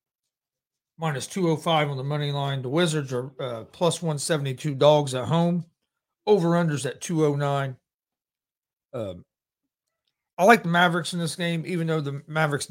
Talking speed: 175 wpm